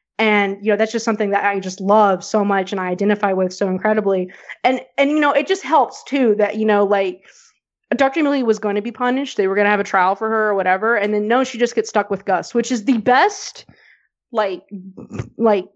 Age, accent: 20-39, American